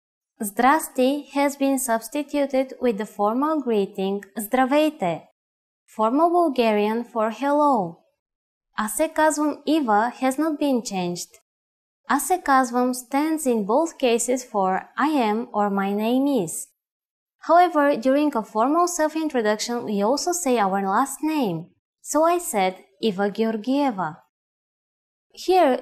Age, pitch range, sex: 20-39, 210-280 Hz, female